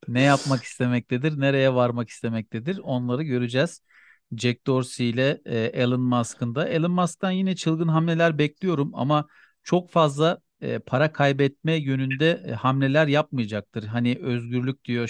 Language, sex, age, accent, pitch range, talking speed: Turkish, male, 40-59, native, 125-155 Hz, 125 wpm